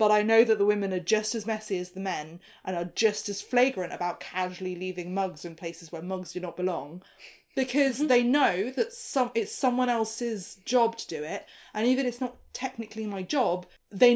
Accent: British